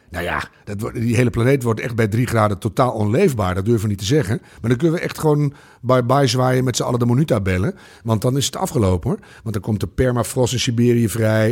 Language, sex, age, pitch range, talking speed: Dutch, male, 50-69, 110-155 Hz, 245 wpm